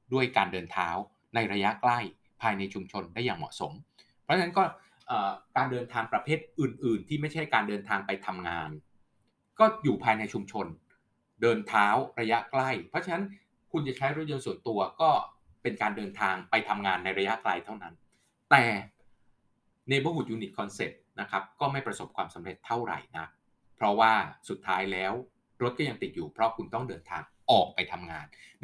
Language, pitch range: Thai, 105-135 Hz